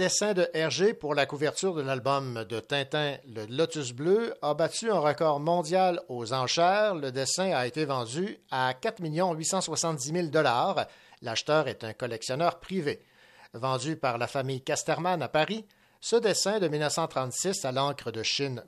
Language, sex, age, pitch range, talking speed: French, male, 60-79, 130-165 Hz, 160 wpm